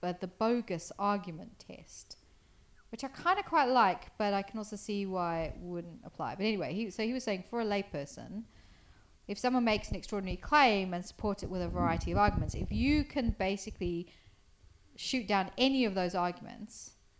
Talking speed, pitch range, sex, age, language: 185 wpm, 160-210 Hz, female, 40-59, English